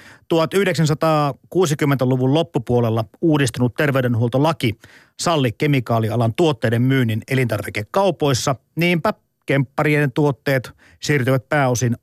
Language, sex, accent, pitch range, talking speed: Finnish, male, native, 120-155 Hz, 70 wpm